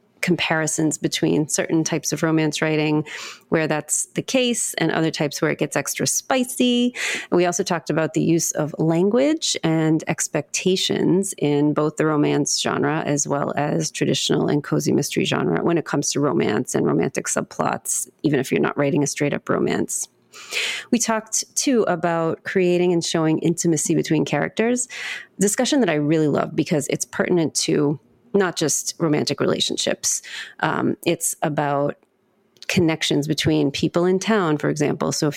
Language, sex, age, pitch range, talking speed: English, female, 30-49, 155-190 Hz, 160 wpm